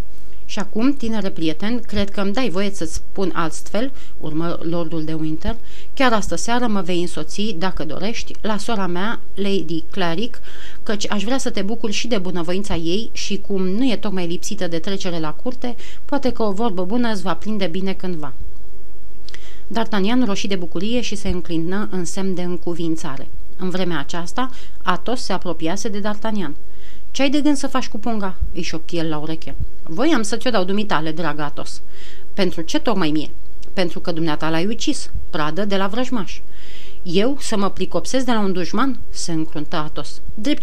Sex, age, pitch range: female, 30-49, 170-225 Hz